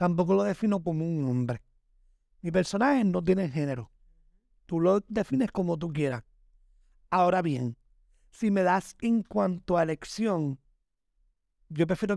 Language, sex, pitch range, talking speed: Spanish, male, 160-215 Hz, 140 wpm